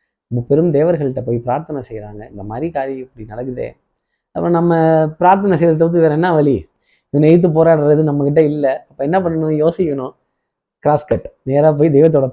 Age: 20-39